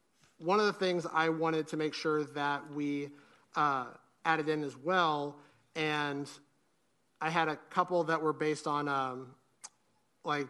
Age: 30-49